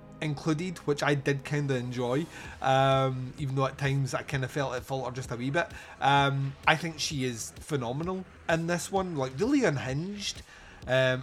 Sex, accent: male, British